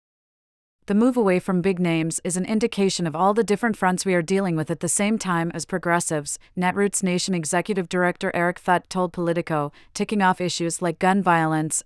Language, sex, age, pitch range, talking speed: English, female, 30-49, 160-195 Hz, 190 wpm